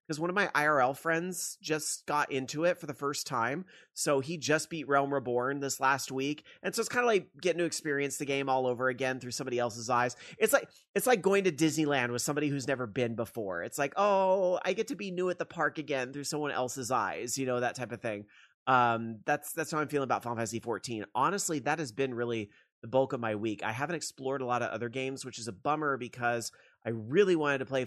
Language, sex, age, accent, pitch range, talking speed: English, male, 30-49, American, 125-160 Hz, 245 wpm